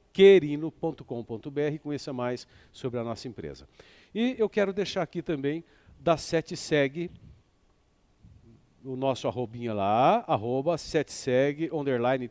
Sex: male